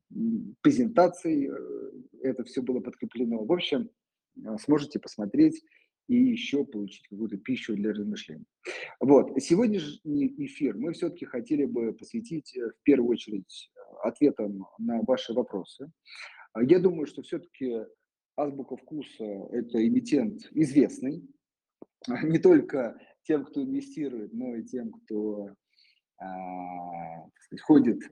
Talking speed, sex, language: 105 wpm, male, Russian